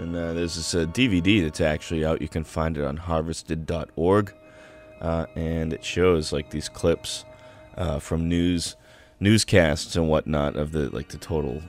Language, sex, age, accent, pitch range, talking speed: English, male, 20-39, American, 75-95 Hz, 170 wpm